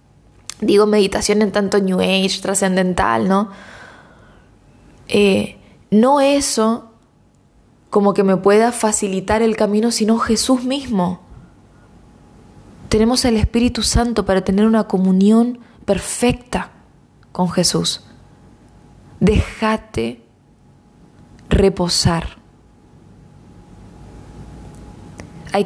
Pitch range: 180-215 Hz